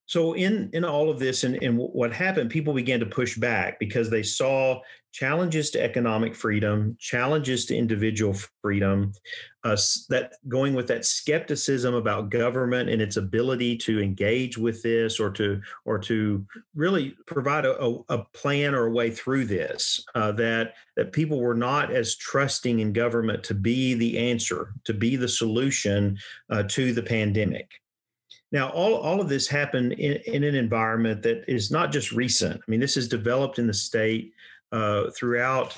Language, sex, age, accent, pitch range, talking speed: English, male, 40-59, American, 110-135 Hz, 170 wpm